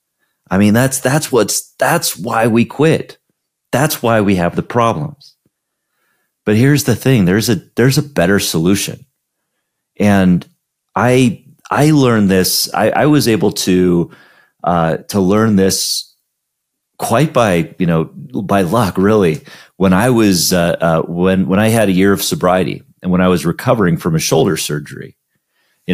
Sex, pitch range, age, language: male, 85-115 Hz, 30-49, English